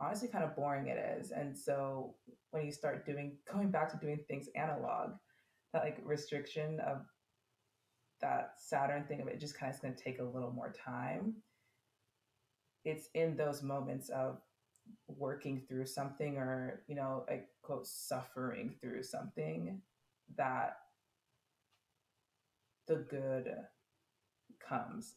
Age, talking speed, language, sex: 20-39, 140 wpm, English, female